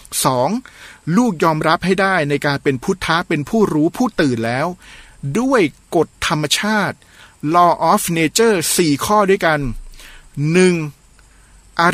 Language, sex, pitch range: Thai, male, 150-200 Hz